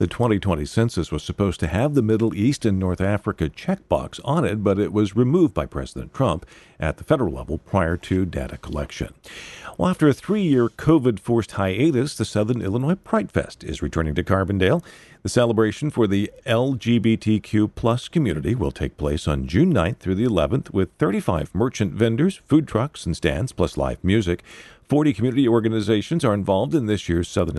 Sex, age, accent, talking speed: male, 50-69, American, 180 wpm